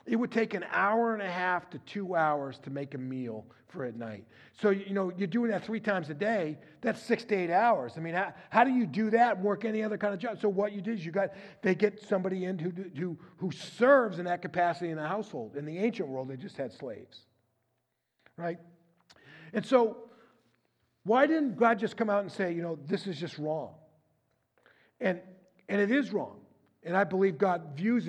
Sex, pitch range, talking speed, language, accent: male, 155-205 Hz, 220 wpm, English, American